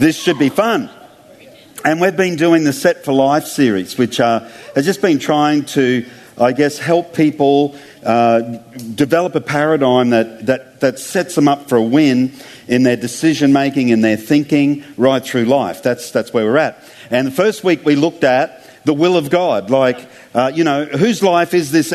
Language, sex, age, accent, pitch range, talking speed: English, male, 50-69, Australian, 130-160 Hz, 195 wpm